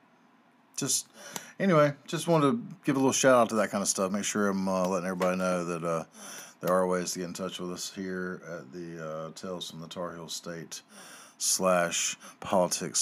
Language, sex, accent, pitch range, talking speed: English, male, American, 85-125 Hz, 205 wpm